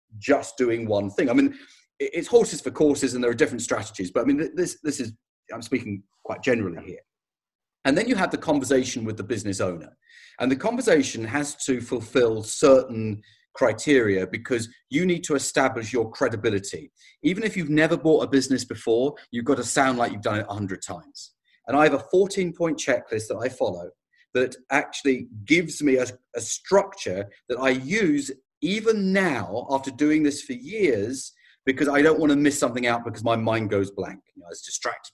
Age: 40-59